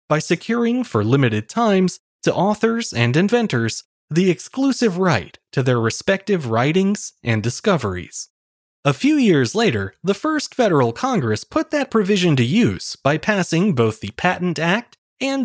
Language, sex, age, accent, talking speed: English, male, 20-39, American, 150 wpm